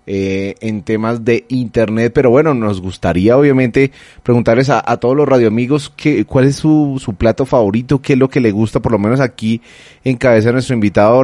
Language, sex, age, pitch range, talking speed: Spanish, male, 30-49, 105-125 Hz, 200 wpm